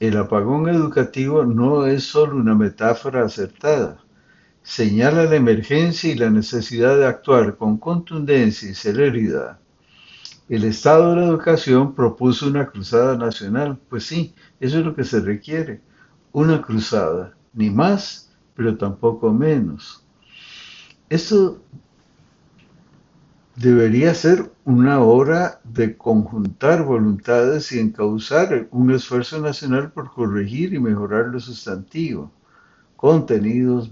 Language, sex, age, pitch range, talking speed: Spanish, male, 60-79, 115-155 Hz, 115 wpm